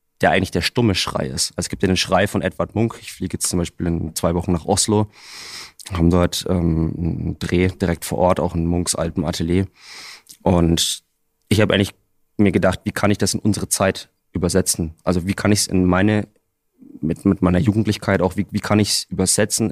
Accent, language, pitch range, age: German, German, 90-100 Hz, 20-39